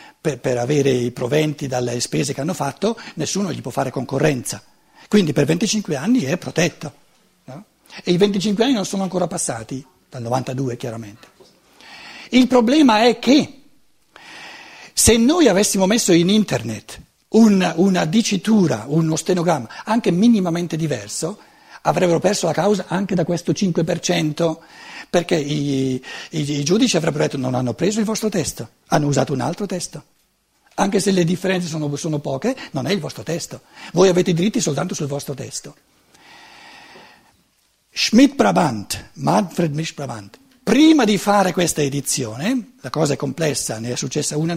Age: 60-79